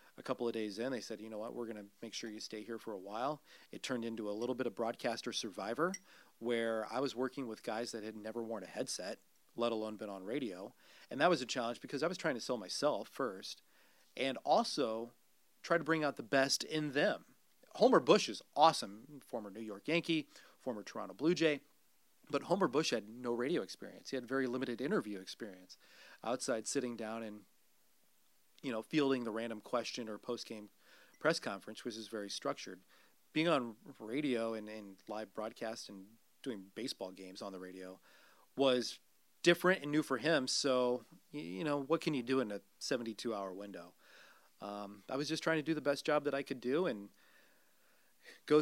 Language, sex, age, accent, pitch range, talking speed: English, male, 40-59, American, 110-140 Hz, 195 wpm